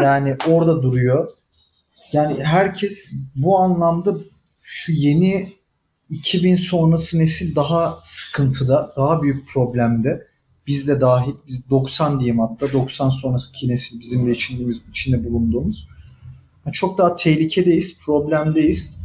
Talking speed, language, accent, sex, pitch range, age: 105 wpm, Turkish, native, male, 130-165 Hz, 40-59